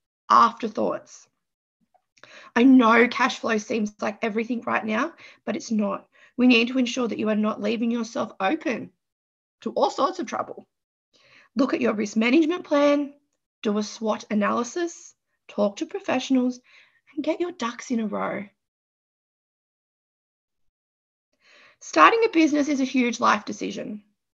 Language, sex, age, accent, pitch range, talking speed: English, female, 20-39, Australian, 225-285 Hz, 140 wpm